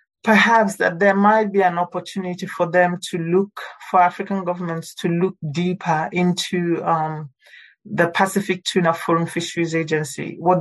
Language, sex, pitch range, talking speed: English, male, 160-185 Hz, 145 wpm